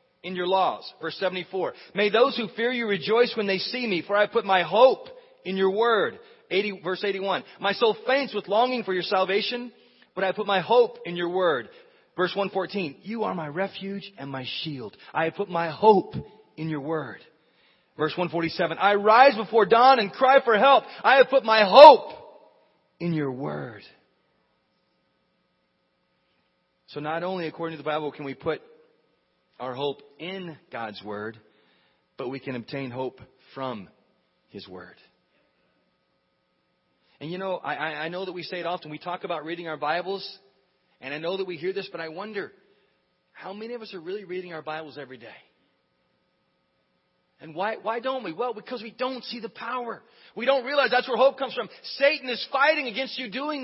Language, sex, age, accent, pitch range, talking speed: English, male, 40-59, American, 160-245 Hz, 180 wpm